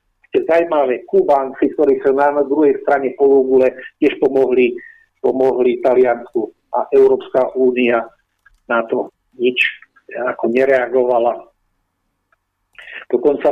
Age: 50-69